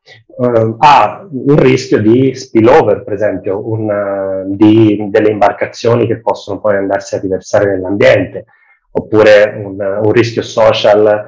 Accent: native